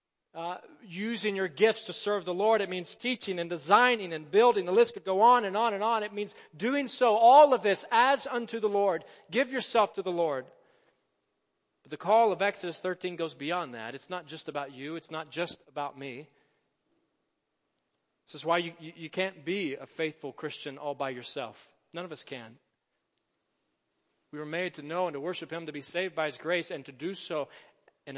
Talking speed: 205 wpm